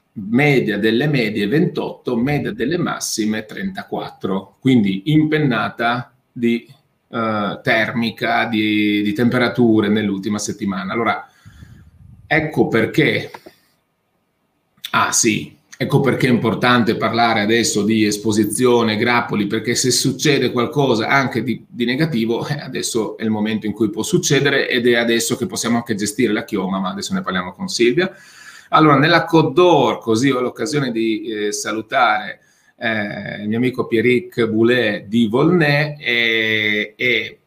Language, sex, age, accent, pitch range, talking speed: Italian, male, 30-49, native, 110-140 Hz, 130 wpm